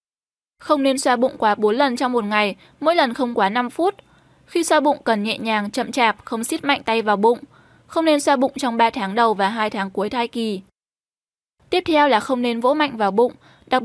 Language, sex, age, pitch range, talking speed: Vietnamese, female, 10-29, 220-275 Hz, 235 wpm